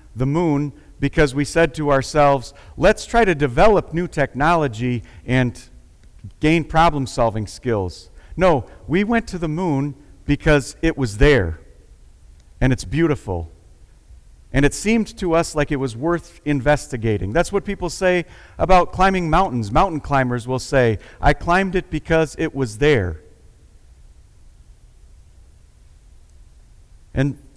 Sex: male